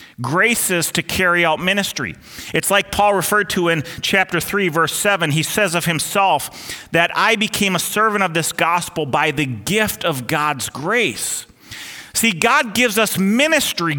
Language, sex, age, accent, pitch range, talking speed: English, male, 40-59, American, 155-205 Hz, 165 wpm